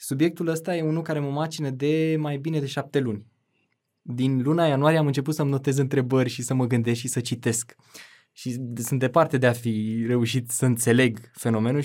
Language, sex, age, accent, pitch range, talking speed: Romanian, male, 20-39, native, 120-160 Hz, 190 wpm